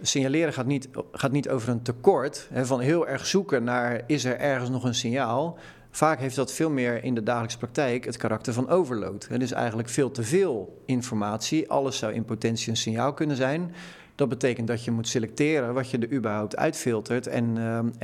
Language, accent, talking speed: Dutch, Dutch, 205 wpm